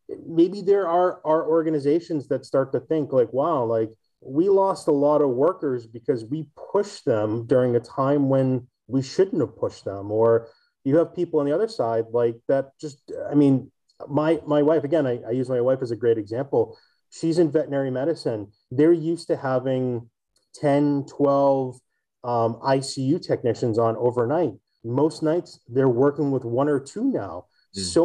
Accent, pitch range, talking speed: American, 120-155 Hz, 175 wpm